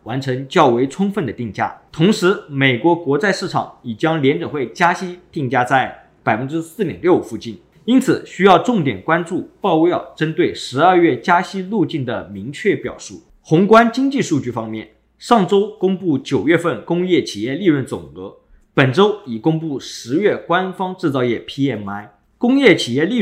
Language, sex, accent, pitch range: Chinese, male, native, 125-185 Hz